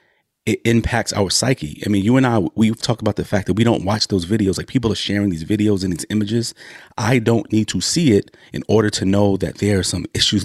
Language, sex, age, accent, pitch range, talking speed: English, male, 30-49, American, 85-105 Hz, 255 wpm